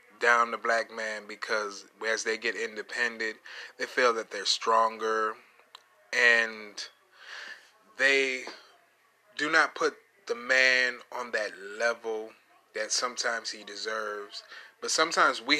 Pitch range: 110-130 Hz